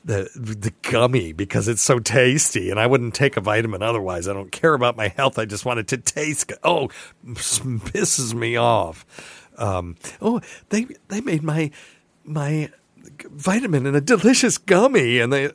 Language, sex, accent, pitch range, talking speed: English, male, American, 95-130 Hz, 175 wpm